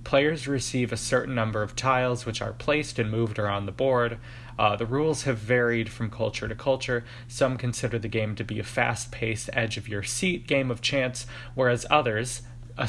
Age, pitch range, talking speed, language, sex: 20-39, 110-125 Hz, 175 wpm, English, male